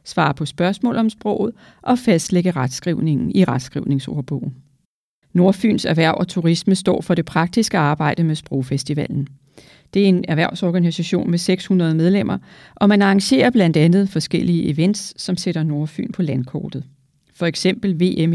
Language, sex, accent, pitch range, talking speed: Danish, female, native, 155-195 Hz, 140 wpm